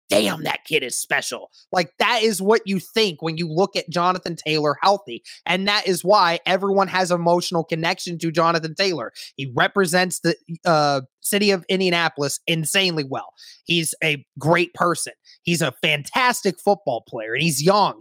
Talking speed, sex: 170 wpm, male